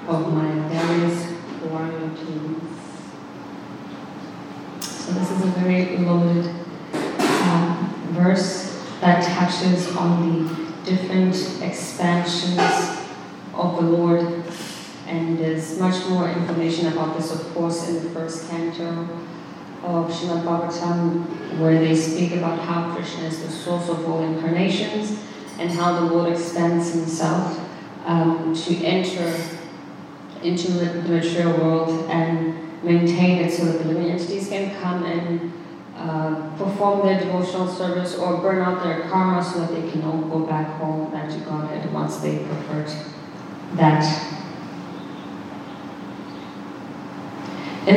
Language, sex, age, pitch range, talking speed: English, female, 20-39, 165-180 Hz, 125 wpm